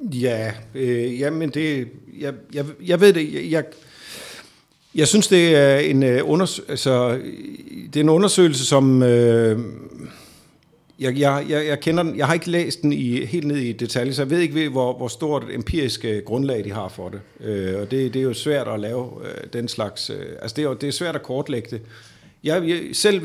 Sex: male